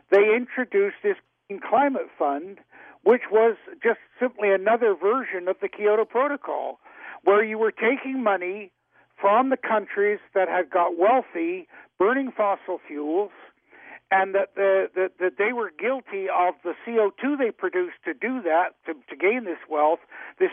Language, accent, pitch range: English, American, 180-245 Hz